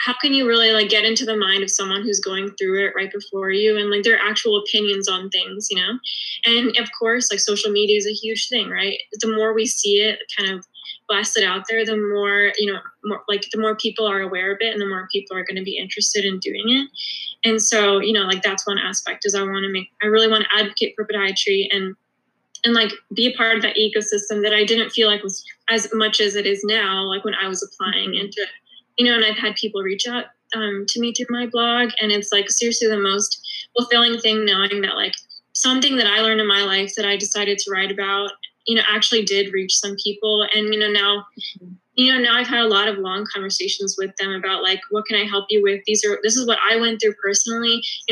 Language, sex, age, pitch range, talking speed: English, female, 10-29, 195-225 Hz, 250 wpm